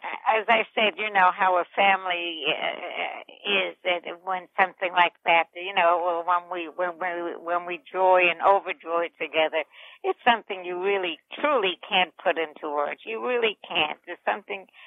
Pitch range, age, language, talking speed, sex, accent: 165-190 Hz, 60-79, English, 155 wpm, female, American